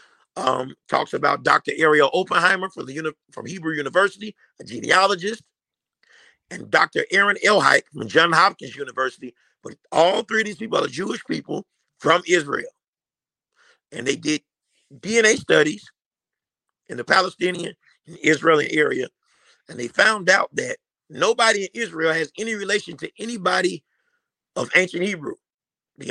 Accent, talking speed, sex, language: American, 145 wpm, male, English